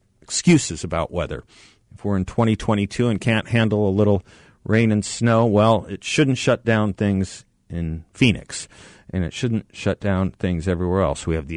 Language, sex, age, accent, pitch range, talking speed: English, male, 40-59, American, 95-120 Hz, 175 wpm